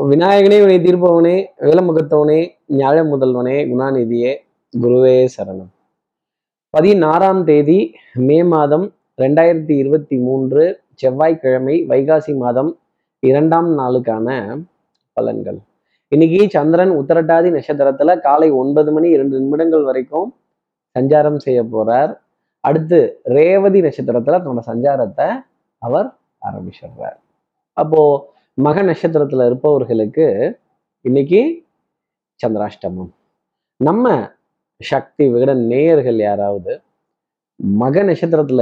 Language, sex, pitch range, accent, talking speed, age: Tamil, male, 130-170 Hz, native, 85 wpm, 20-39